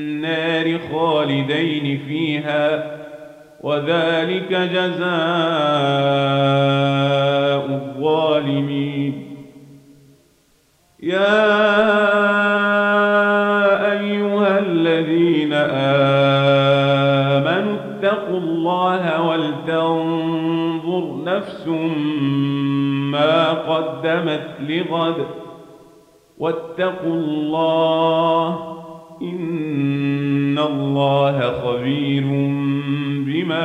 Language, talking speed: Arabic, 40 wpm